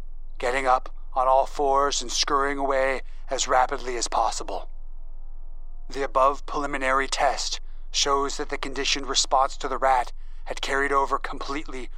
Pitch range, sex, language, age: 125-140 Hz, male, English, 30-49